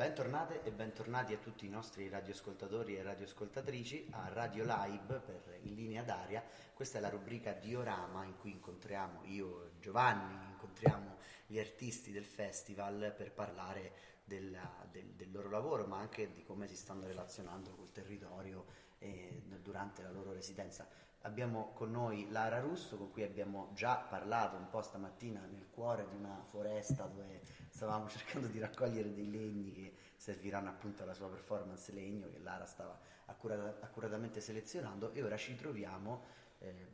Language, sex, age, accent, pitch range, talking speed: Italian, male, 30-49, native, 95-110 Hz, 155 wpm